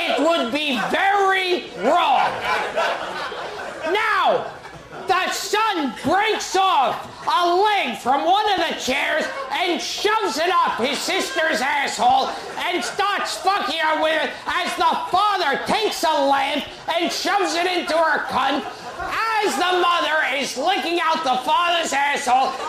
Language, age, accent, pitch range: English, 30-49, American, 300-395 Hz